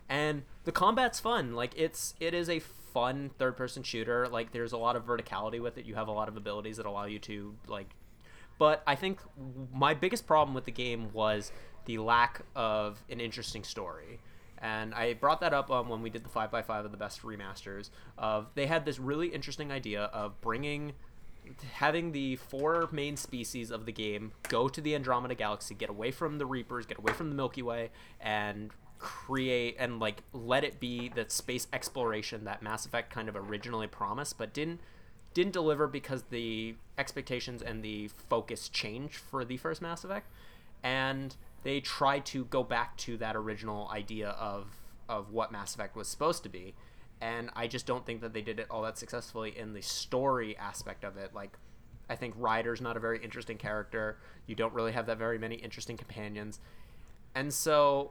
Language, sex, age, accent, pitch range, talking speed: English, male, 20-39, American, 110-135 Hz, 195 wpm